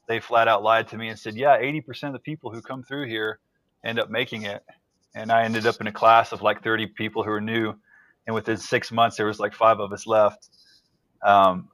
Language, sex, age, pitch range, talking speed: English, male, 30-49, 110-125 Hz, 240 wpm